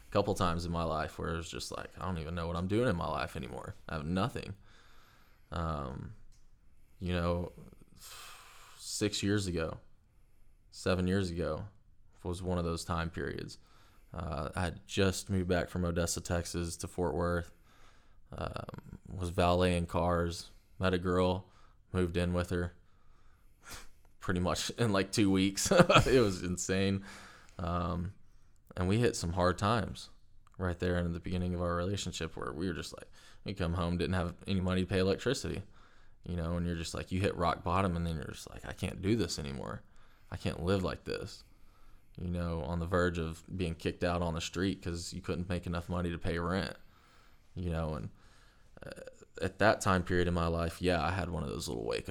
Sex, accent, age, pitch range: male, American, 20-39, 85-95 Hz